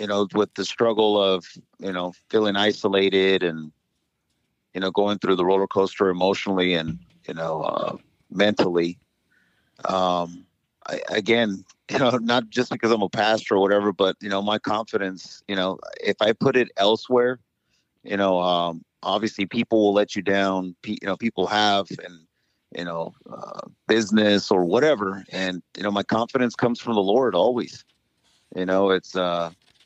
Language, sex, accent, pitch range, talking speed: English, male, American, 95-110 Hz, 165 wpm